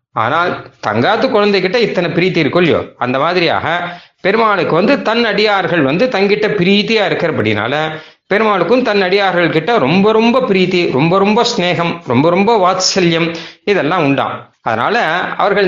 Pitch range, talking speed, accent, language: 175-200 Hz, 125 wpm, native, Tamil